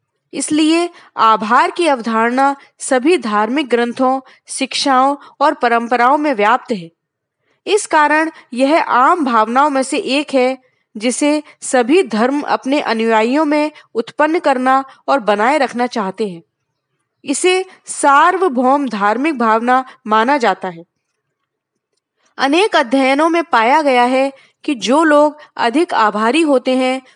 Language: Hindi